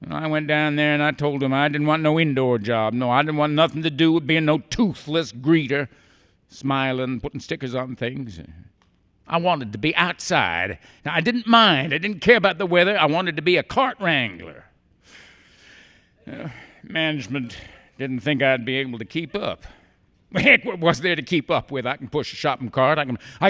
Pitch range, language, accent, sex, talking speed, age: 125-175 Hz, English, American, male, 195 wpm, 50-69